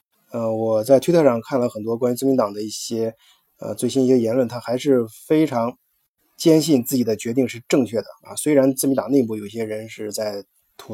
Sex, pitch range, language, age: male, 115-140 Hz, Chinese, 20-39